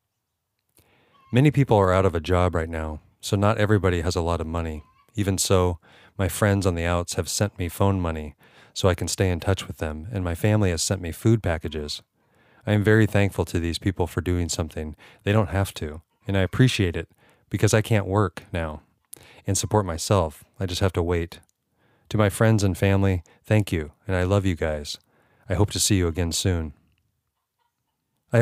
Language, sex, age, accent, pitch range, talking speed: English, male, 30-49, American, 85-105 Hz, 205 wpm